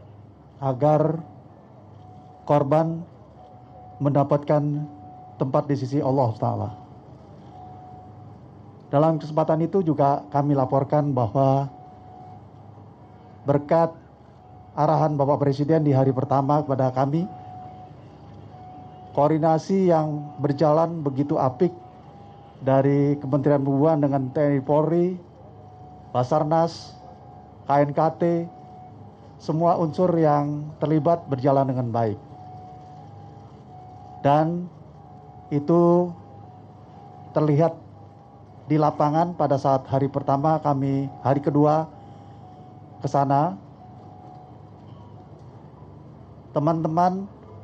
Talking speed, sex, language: 75 wpm, male, Indonesian